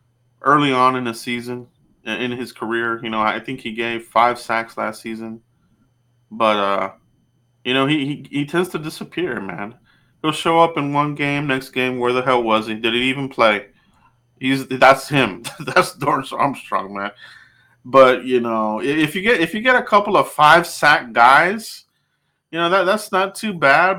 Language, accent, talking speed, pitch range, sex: English, American, 190 wpm, 120-165 Hz, male